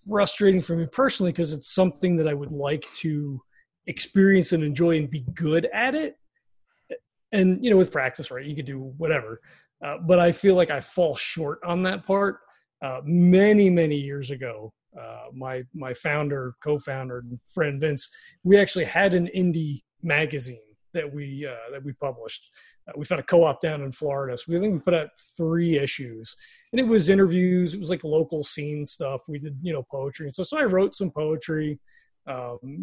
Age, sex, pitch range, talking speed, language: 30-49, male, 145-190 Hz, 190 wpm, English